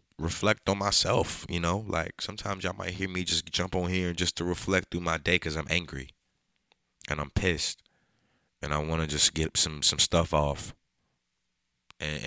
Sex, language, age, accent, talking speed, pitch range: male, English, 20-39, American, 185 wpm, 70-85 Hz